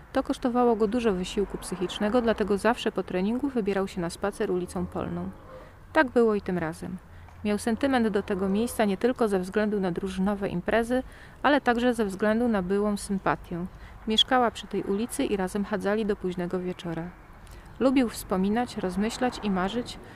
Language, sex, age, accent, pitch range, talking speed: Polish, female, 40-59, native, 185-235 Hz, 165 wpm